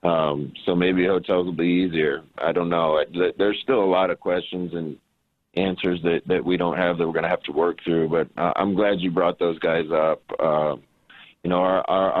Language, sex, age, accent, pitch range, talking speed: English, male, 30-49, American, 85-95 Hz, 215 wpm